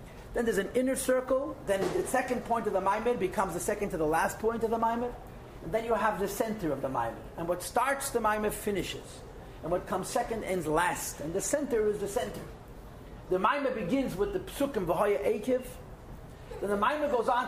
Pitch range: 185-245 Hz